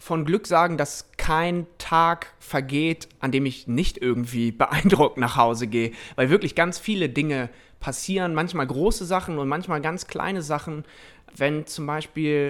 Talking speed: 160 wpm